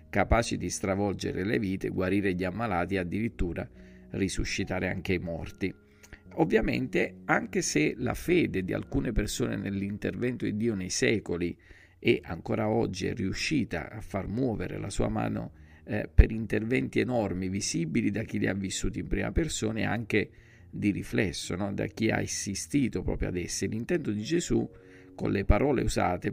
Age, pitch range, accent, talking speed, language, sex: 50-69, 90-110 Hz, native, 160 wpm, Italian, male